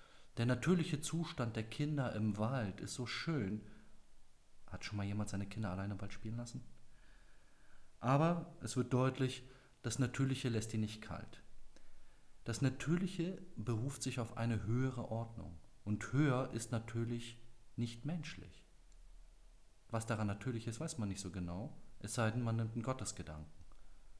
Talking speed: 150 wpm